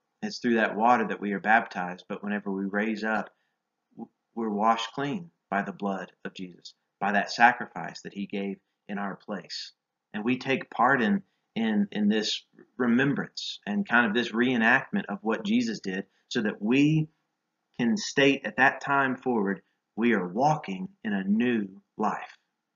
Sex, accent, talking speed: male, American, 170 wpm